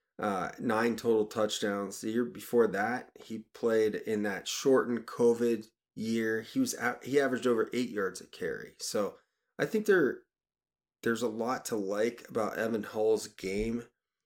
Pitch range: 110-145 Hz